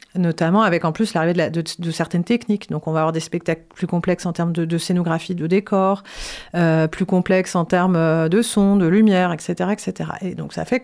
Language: French